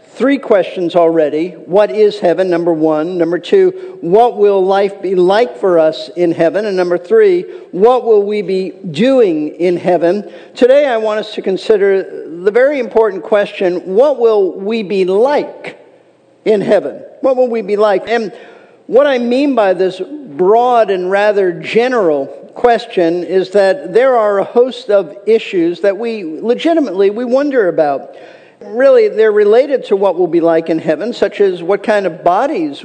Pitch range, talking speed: 180-260 Hz, 170 wpm